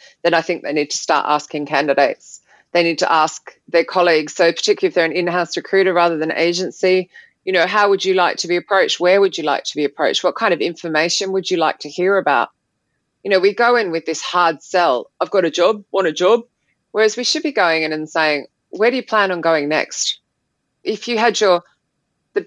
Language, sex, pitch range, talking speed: English, female, 155-195 Hz, 230 wpm